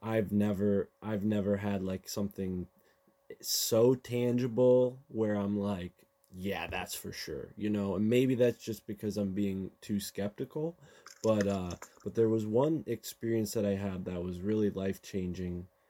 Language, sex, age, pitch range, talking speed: English, male, 20-39, 95-110 Hz, 155 wpm